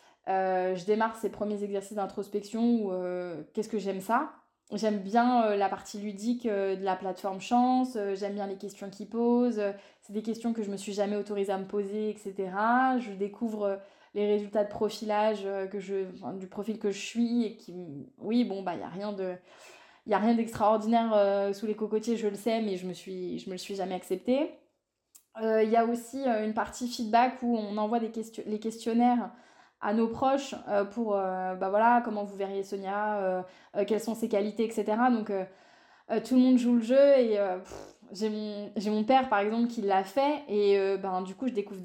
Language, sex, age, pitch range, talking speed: French, female, 20-39, 195-230 Hz, 220 wpm